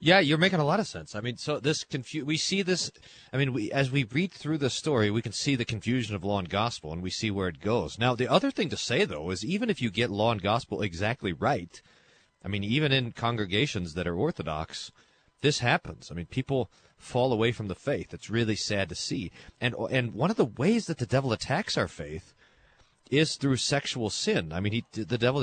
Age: 30-49